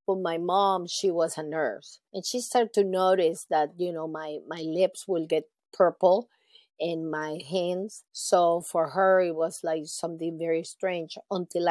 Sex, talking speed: female, 175 wpm